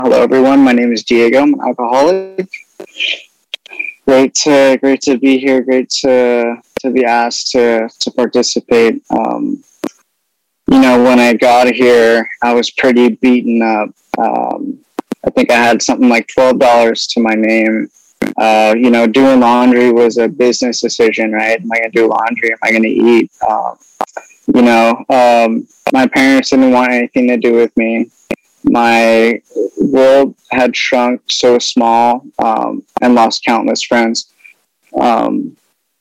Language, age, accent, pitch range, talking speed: English, 20-39, American, 115-135 Hz, 155 wpm